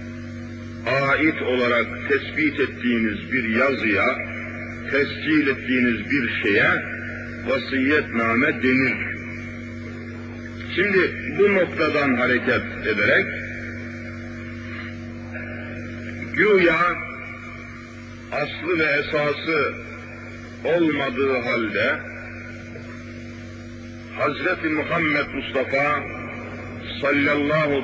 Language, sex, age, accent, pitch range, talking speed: Turkish, male, 50-69, native, 115-140 Hz, 60 wpm